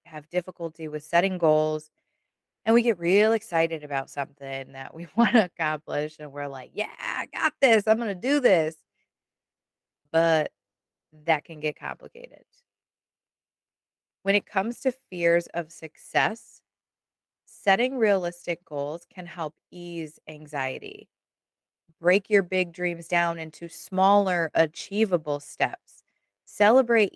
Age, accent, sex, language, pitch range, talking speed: 20-39, American, female, English, 155-210 Hz, 130 wpm